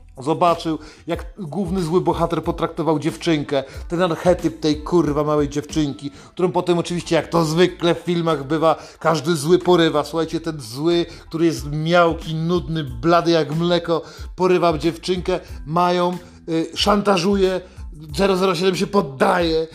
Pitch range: 160-195 Hz